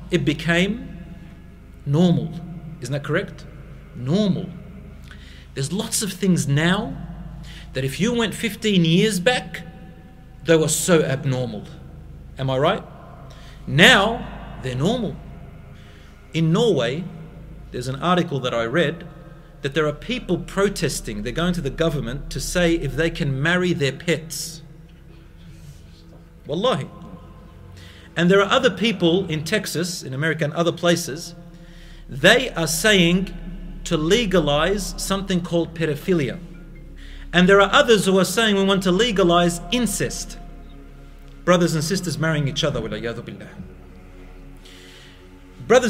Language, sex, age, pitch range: English, male, 40-59, 140-185 Hz